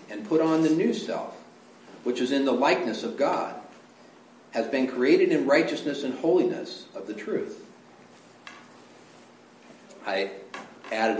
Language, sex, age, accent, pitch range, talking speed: English, male, 50-69, American, 95-125 Hz, 135 wpm